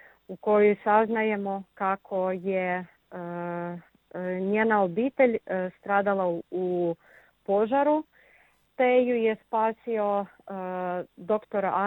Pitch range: 185-230 Hz